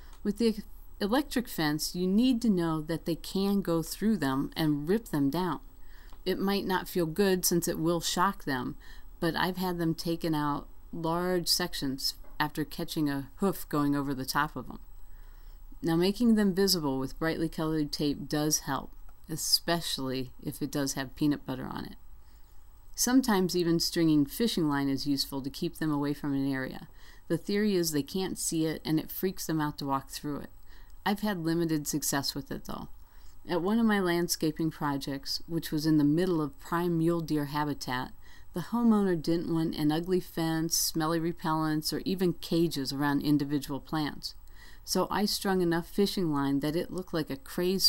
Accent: American